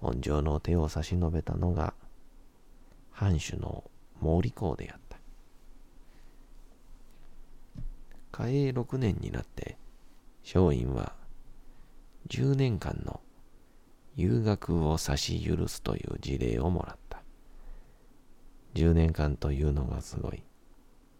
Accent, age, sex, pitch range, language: native, 40-59, male, 80-100 Hz, Japanese